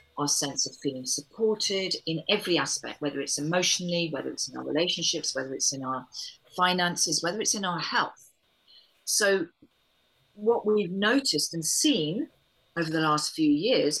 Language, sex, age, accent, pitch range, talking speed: English, female, 40-59, British, 145-175 Hz, 160 wpm